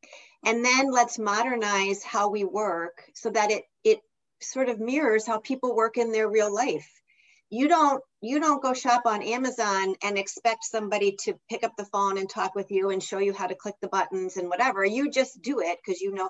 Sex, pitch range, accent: female, 200-260 Hz, American